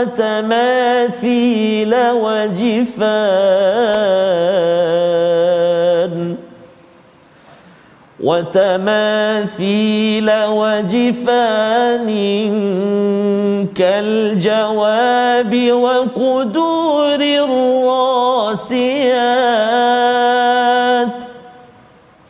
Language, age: Malayalam, 40-59